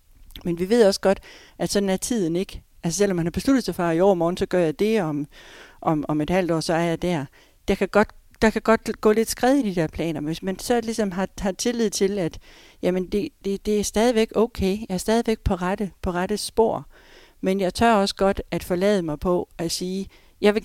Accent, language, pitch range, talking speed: native, Danish, 175-210 Hz, 245 wpm